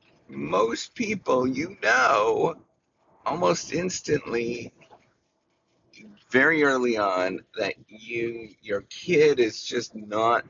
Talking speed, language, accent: 90 wpm, English, American